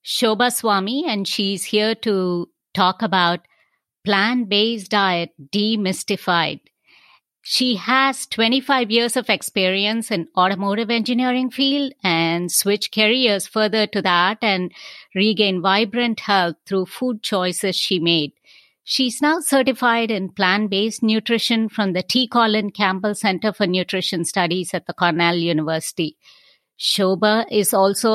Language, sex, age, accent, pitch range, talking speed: English, female, 50-69, Indian, 185-230 Hz, 125 wpm